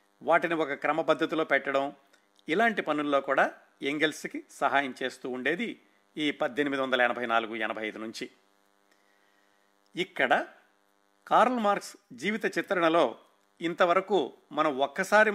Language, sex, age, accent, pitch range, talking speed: Telugu, male, 50-69, native, 100-160 Hz, 105 wpm